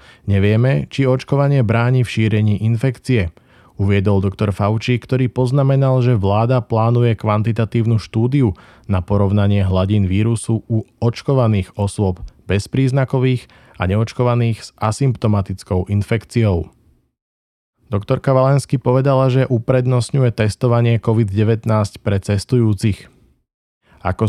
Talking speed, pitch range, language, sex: 95 wpm, 100-120 Hz, Slovak, male